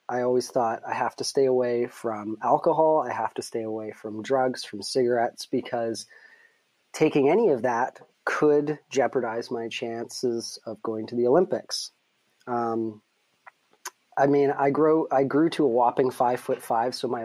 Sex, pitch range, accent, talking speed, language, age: male, 115-135 Hz, American, 165 wpm, English, 30-49